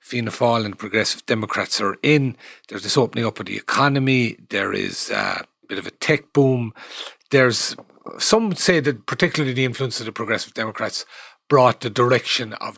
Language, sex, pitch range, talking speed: English, male, 115-150 Hz, 175 wpm